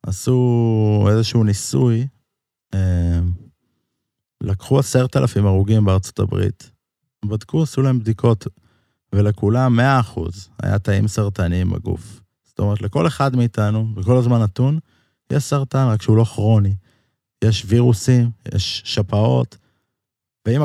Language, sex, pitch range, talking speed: Hebrew, male, 100-130 Hz, 115 wpm